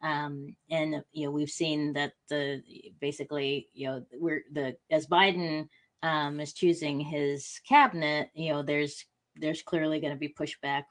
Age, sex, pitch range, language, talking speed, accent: 30-49, female, 140-160 Hz, English, 160 wpm, American